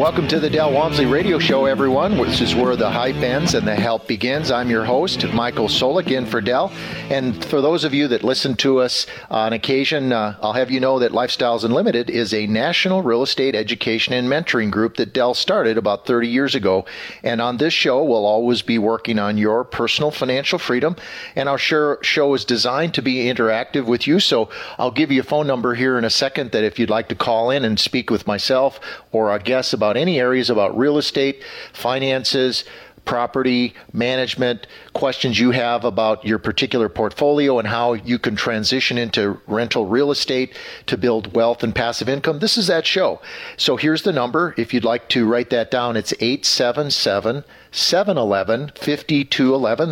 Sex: male